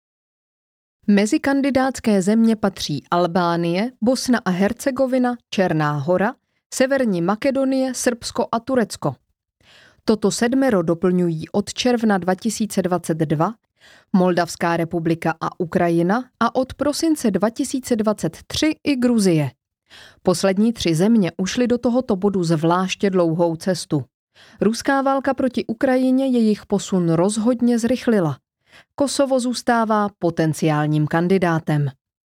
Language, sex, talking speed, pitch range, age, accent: Czech, female, 95 wpm, 175-250 Hz, 30-49, native